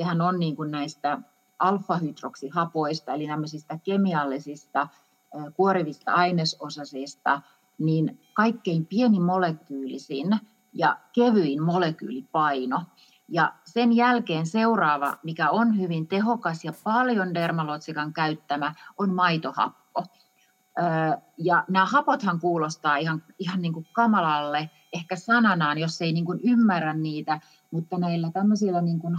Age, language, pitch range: 30-49, Finnish, 155-200 Hz